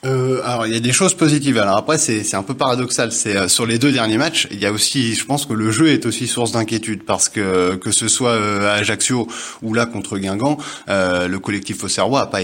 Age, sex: 20-39, male